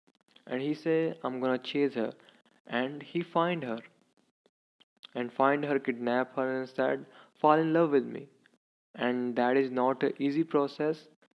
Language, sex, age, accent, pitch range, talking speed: English, male, 20-39, Indian, 125-150 Hz, 160 wpm